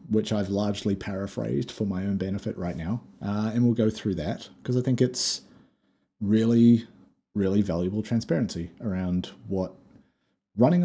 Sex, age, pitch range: male, 30-49, 90-115 Hz